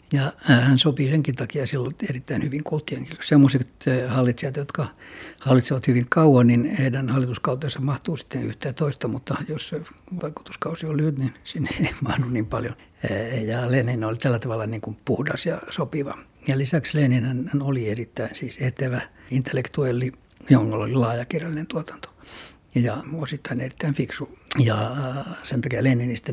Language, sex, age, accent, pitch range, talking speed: Finnish, male, 60-79, native, 125-150 Hz, 150 wpm